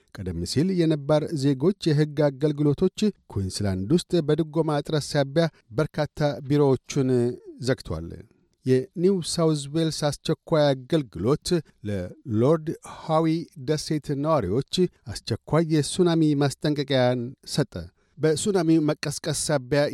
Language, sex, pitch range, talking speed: Amharic, male, 135-160 Hz, 80 wpm